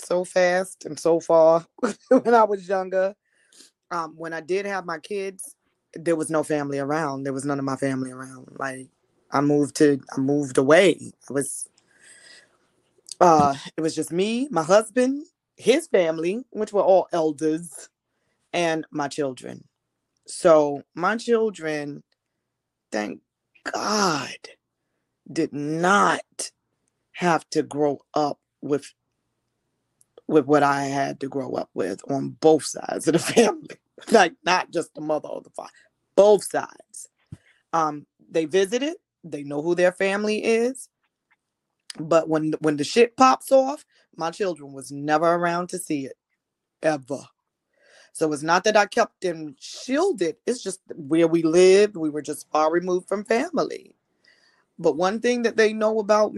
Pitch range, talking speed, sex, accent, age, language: 150-195 Hz, 150 wpm, female, American, 20-39, English